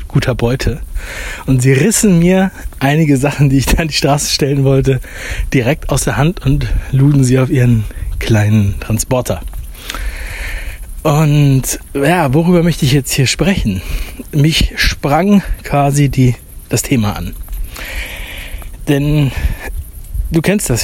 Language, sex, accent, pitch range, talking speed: German, male, German, 95-145 Hz, 130 wpm